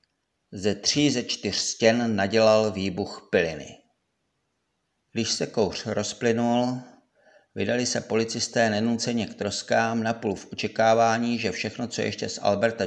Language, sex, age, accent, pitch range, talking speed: Czech, male, 50-69, native, 105-120 Hz, 130 wpm